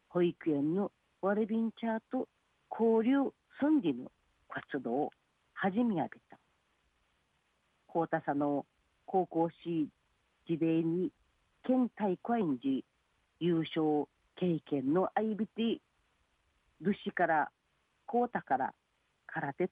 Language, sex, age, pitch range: Japanese, female, 50-69, 160-245 Hz